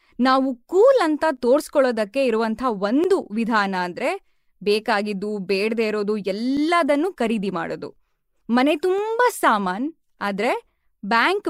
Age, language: 20-39, Kannada